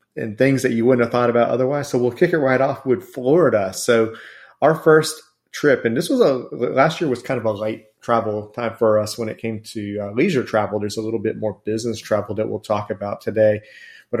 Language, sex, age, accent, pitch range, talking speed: English, male, 30-49, American, 110-120 Hz, 235 wpm